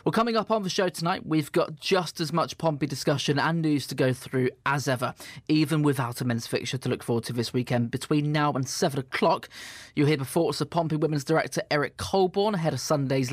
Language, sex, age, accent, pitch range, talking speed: English, male, 20-39, British, 135-165 Hz, 225 wpm